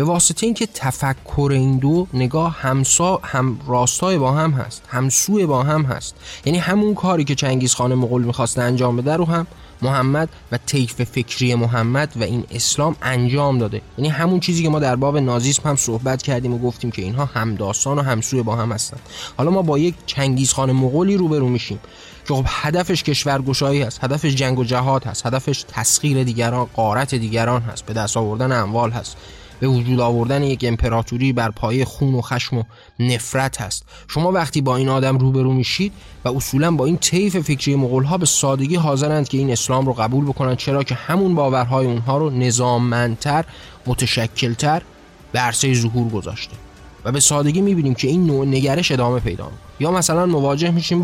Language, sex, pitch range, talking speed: Persian, male, 120-150 Hz, 175 wpm